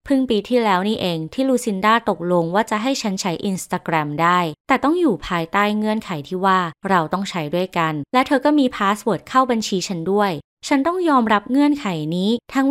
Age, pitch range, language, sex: 20-39, 170-235 Hz, Thai, female